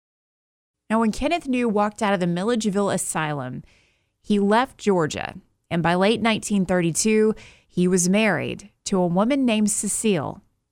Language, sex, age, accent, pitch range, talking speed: English, female, 30-49, American, 165-215 Hz, 140 wpm